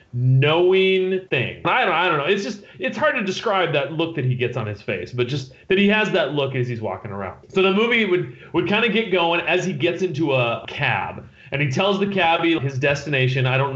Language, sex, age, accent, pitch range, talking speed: English, male, 30-49, American, 130-170 Hz, 245 wpm